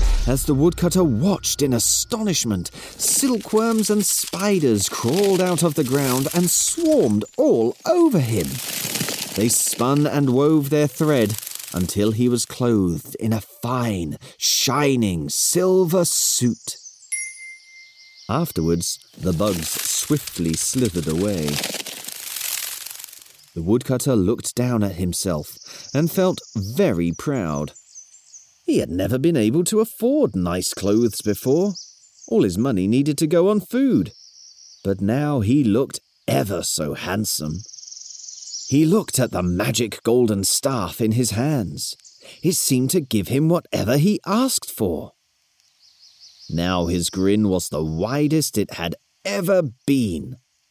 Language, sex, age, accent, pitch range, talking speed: English, male, 30-49, British, 105-175 Hz, 125 wpm